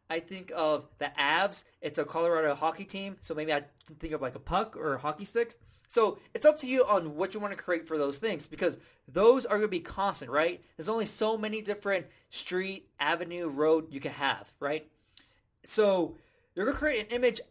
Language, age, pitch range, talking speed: English, 30-49, 155-215 Hz, 215 wpm